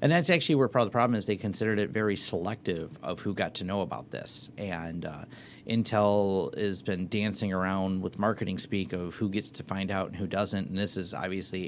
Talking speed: 225 wpm